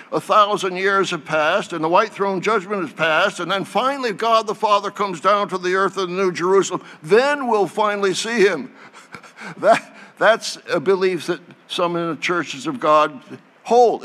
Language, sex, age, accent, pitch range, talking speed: English, male, 60-79, American, 150-190 Hz, 190 wpm